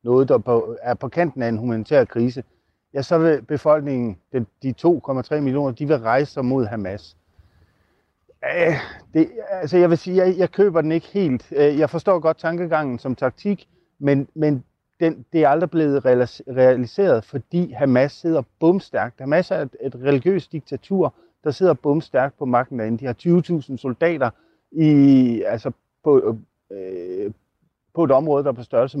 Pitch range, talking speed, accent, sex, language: 120-160 Hz, 150 wpm, native, male, Danish